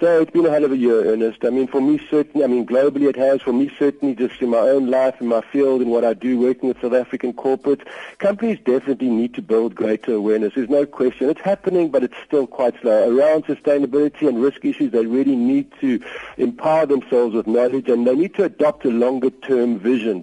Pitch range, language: 120-170 Hz, English